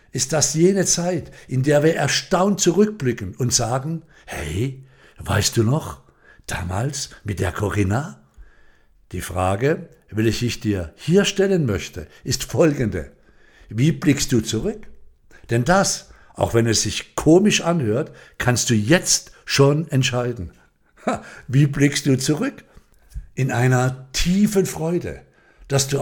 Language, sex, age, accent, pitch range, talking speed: German, male, 60-79, German, 110-150 Hz, 130 wpm